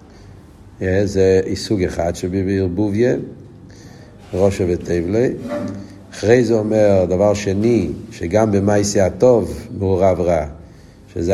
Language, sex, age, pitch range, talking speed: Hebrew, male, 50-69, 95-115 Hz, 100 wpm